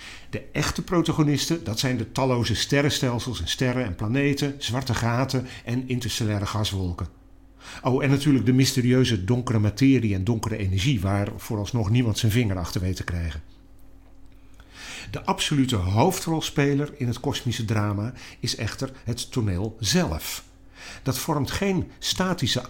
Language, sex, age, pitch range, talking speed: Dutch, male, 50-69, 100-135 Hz, 135 wpm